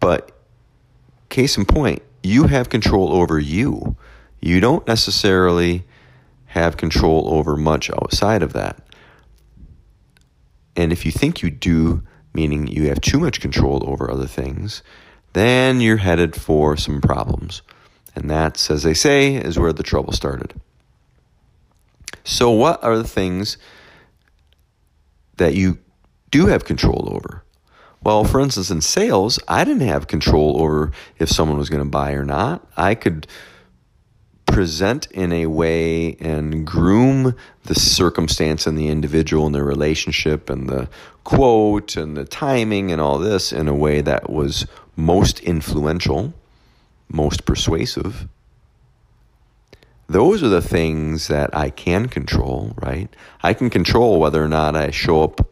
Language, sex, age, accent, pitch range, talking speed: English, male, 40-59, American, 75-100 Hz, 140 wpm